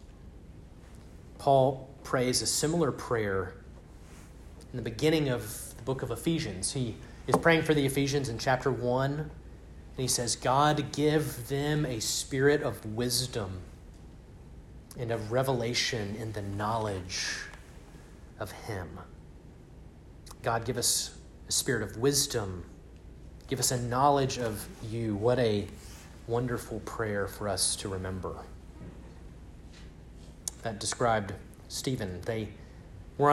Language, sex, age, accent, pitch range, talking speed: English, male, 30-49, American, 95-135 Hz, 120 wpm